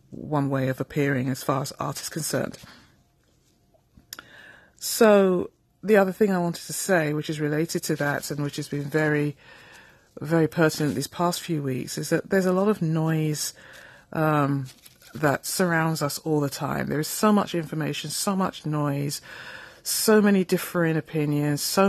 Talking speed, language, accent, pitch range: 165 wpm, English, British, 145-180 Hz